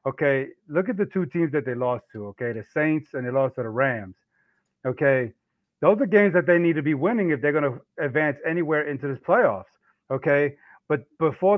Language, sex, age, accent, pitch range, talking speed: English, male, 30-49, American, 135-175 Hz, 210 wpm